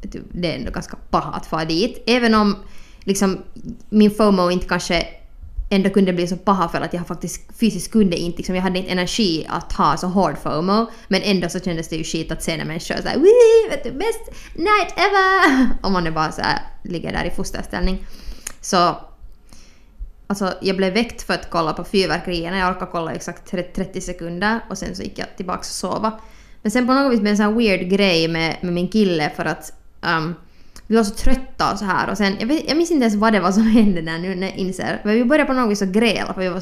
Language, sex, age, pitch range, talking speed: Swedish, female, 20-39, 175-220 Hz, 225 wpm